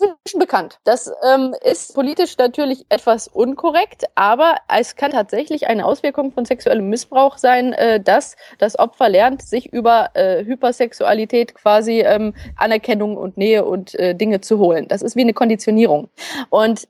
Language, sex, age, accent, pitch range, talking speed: German, female, 20-39, German, 205-260 Hz, 155 wpm